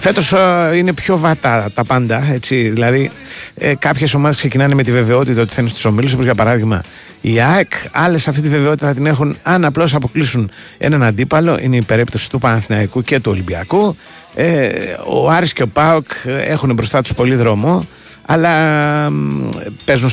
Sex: male